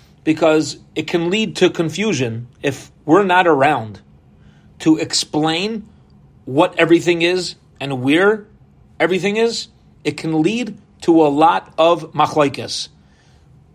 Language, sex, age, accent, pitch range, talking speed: English, male, 40-59, American, 145-180 Hz, 120 wpm